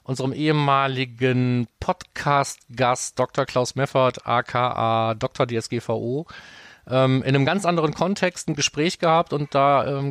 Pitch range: 125-145 Hz